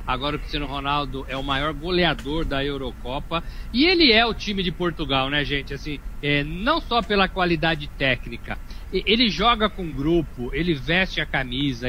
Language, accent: Portuguese, Brazilian